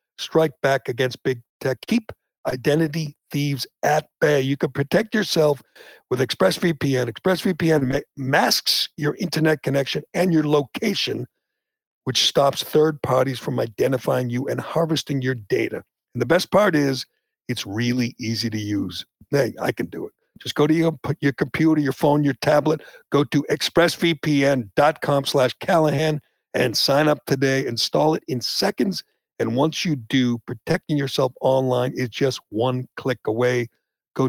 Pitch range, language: 130-160 Hz, English